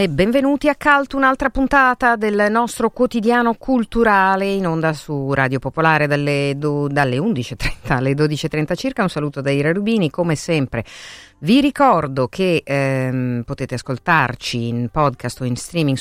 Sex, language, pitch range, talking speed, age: female, Italian, 130-175 Hz, 145 wpm, 50-69